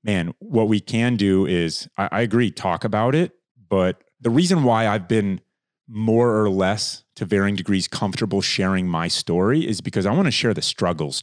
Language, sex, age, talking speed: English, male, 30-49, 190 wpm